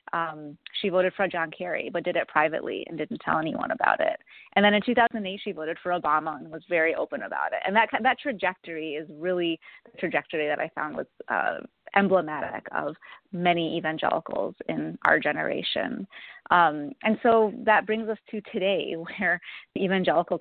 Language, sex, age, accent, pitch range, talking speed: English, female, 30-49, American, 165-200 Hz, 180 wpm